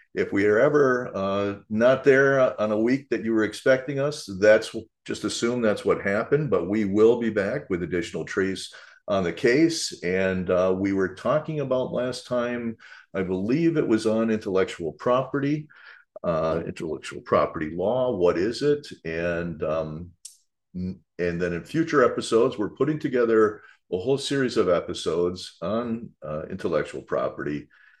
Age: 50-69